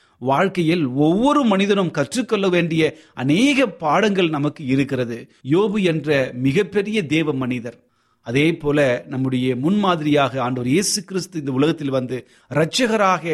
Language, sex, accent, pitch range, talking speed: Tamil, male, native, 125-165 Hz, 110 wpm